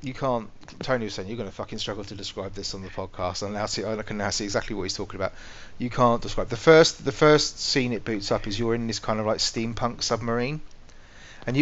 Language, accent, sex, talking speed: English, British, male, 245 wpm